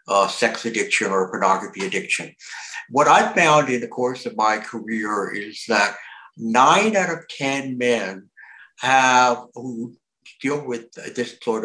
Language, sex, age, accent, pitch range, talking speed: English, male, 60-79, American, 115-150 Hz, 145 wpm